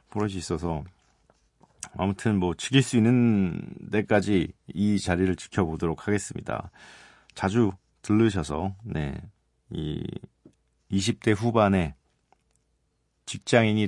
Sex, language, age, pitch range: male, Korean, 40-59, 85-115 Hz